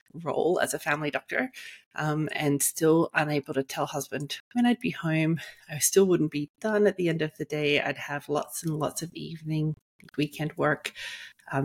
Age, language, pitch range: 30-49, English, 140-165 Hz